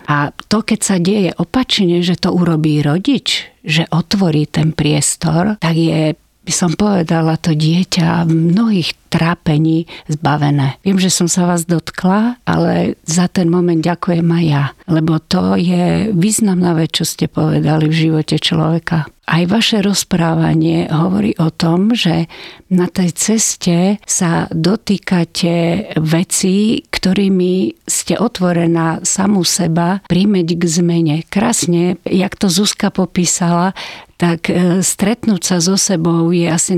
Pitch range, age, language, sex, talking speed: 165-185 Hz, 50-69, Slovak, female, 130 wpm